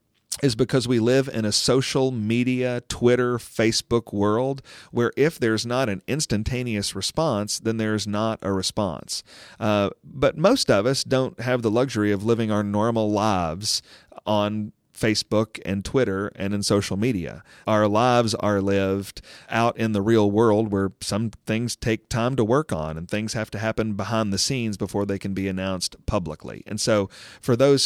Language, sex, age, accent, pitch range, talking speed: English, male, 40-59, American, 100-120 Hz, 170 wpm